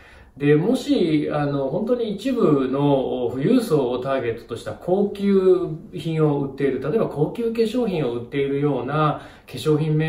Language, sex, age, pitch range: Japanese, male, 20-39, 120-180 Hz